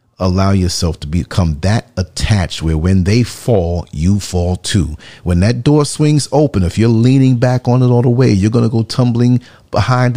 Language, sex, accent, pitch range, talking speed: English, male, American, 85-115 Hz, 195 wpm